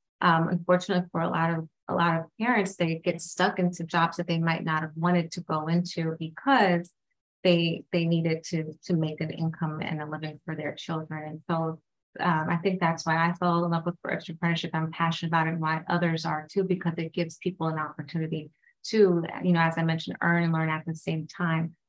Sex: female